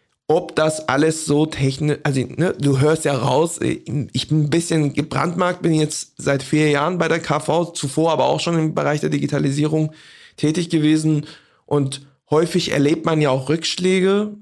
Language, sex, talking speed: German, male, 165 wpm